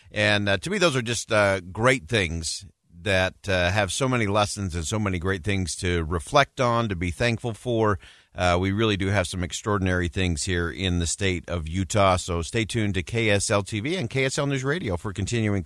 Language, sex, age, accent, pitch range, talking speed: English, male, 50-69, American, 90-115 Hz, 205 wpm